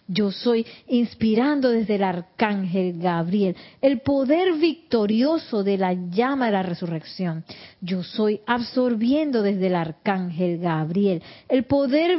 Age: 40-59